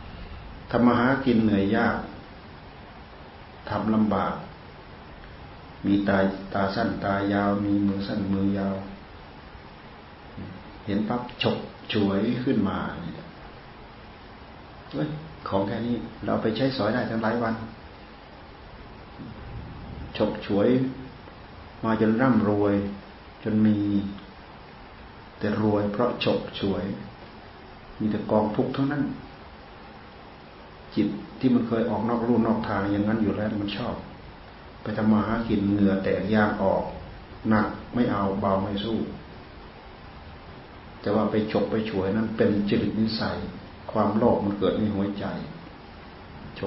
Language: Thai